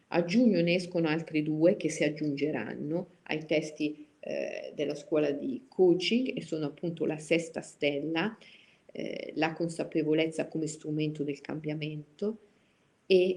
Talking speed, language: 135 wpm, Italian